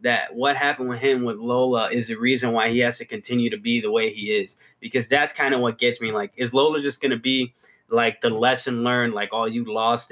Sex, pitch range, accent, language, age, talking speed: male, 115-130 Hz, American, English, 20-39, 255 wpm